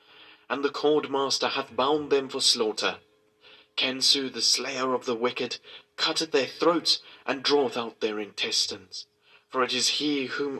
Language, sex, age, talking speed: English, male, 30-49, 155 wpm